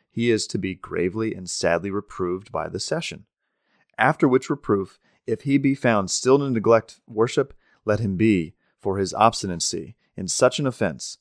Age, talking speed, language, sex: 30-49, 170 wpm, English, male